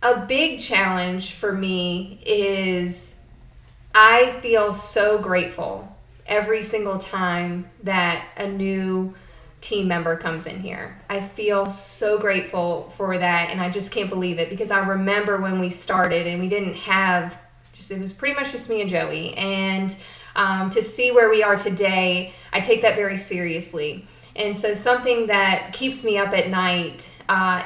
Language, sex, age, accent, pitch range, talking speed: English, female, 20-39, American, 180-205 Hz, 165 wpm